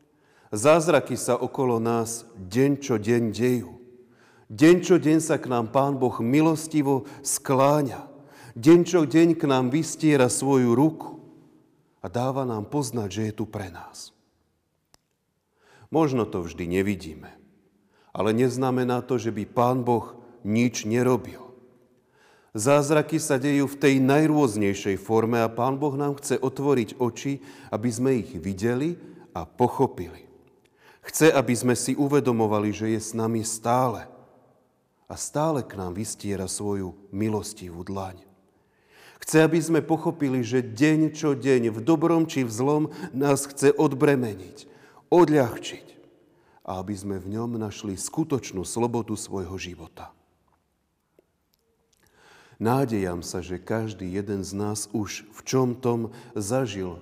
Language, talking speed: Slovak, 130 wpm